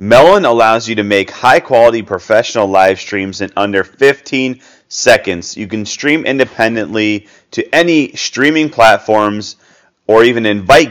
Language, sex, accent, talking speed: English, male, American, 130 wpm